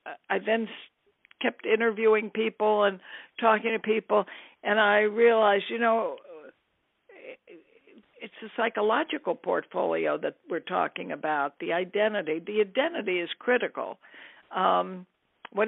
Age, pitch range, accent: 60-79, 195-235 Hz, American